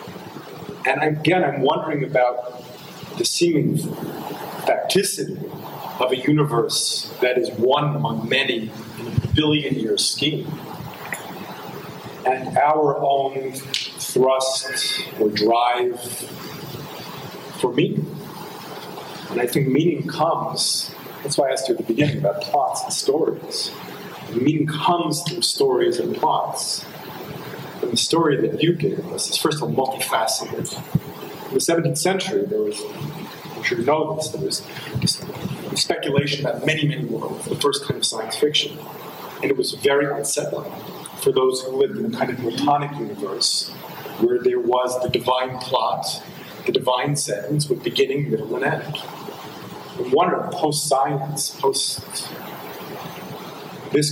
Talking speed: 135 wpm